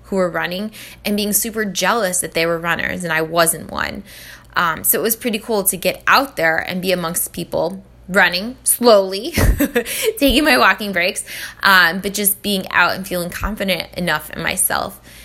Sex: female